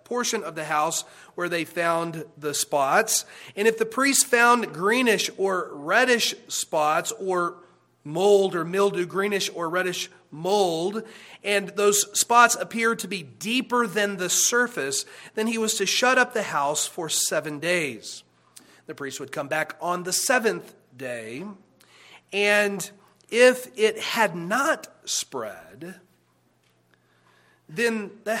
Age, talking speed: 40-59, 135 wpm